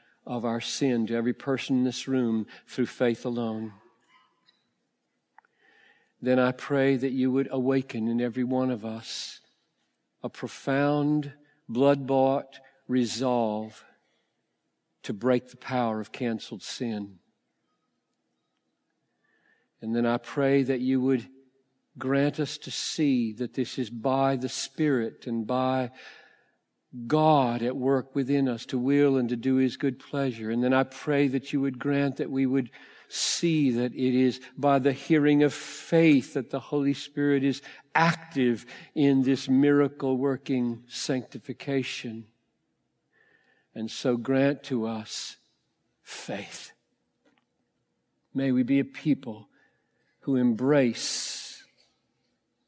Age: 50-69